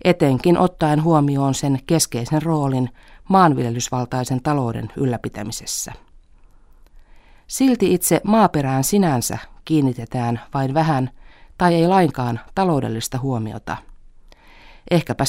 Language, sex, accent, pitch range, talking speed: Finnish, female, native, 125-160 Hz, 85 wpm